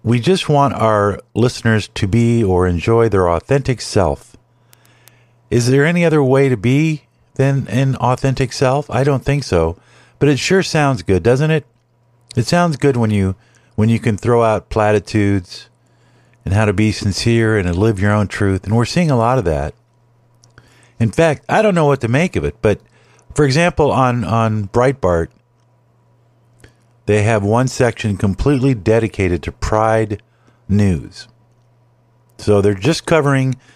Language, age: English, 50-69